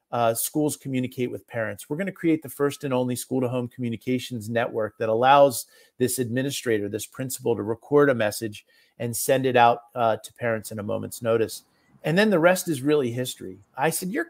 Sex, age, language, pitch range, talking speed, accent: male, 40-59, English, 125-155 Hz, 195 wpm, American